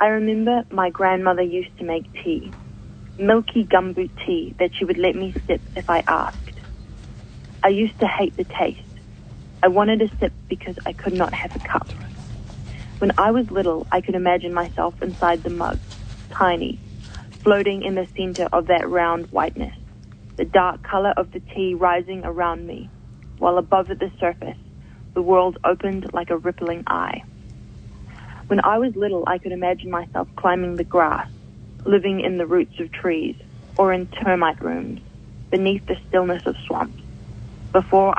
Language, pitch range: English, 170-195 Hz